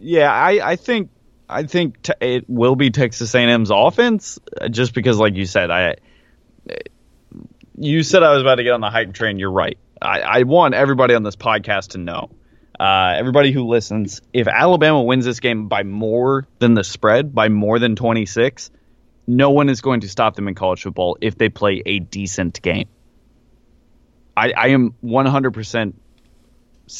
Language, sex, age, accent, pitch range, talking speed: English, male, 20-39, American, 100-130 Hz, 175 wpm